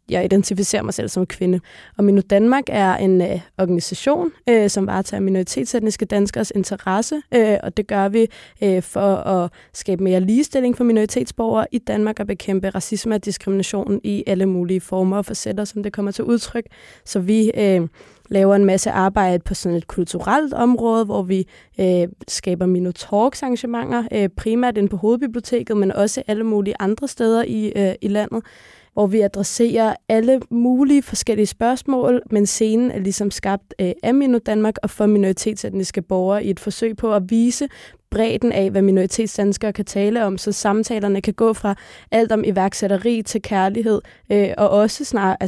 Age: 20-39